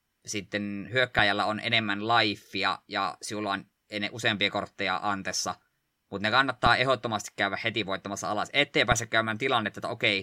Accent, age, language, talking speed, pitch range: native, 20-39, Finnish, 145 wpm, 105-120 Hz